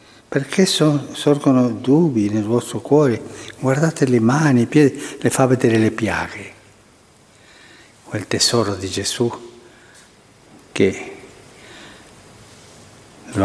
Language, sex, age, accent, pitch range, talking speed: Italian, male, 60-79, native, 105-135 Hz, 105 wpm